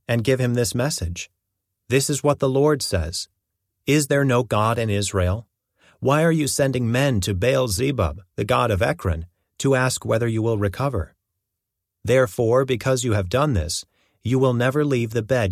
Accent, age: American, 40-59